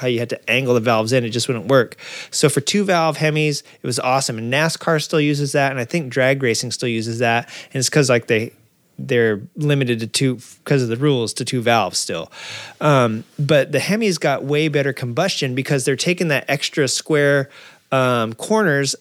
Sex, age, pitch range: male, 30-49, 125-150 Hz